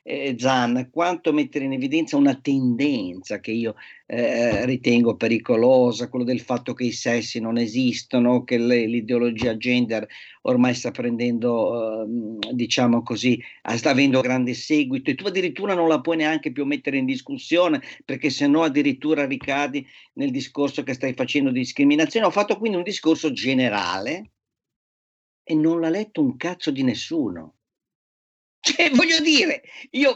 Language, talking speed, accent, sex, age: Italian, 150 wpm, native, male, 50-69